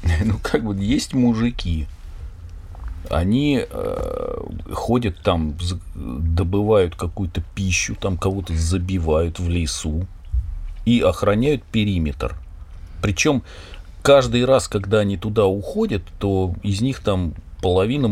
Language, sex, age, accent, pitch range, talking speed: Russian, male, 40-59, native, 80-105 Hz, 105 wpm